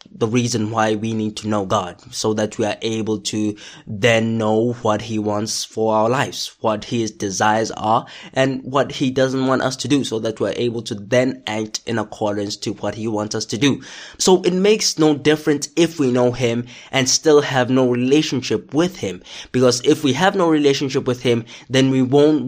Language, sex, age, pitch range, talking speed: English, male, 20-39, 110-135 Hz, 205 wpm